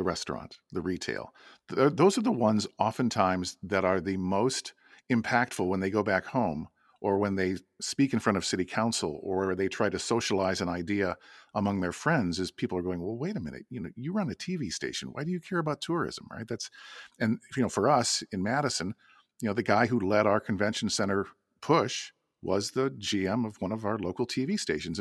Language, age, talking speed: English, 50-69, 215 wpm